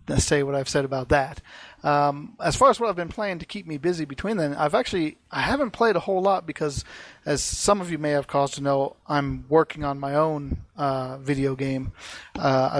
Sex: male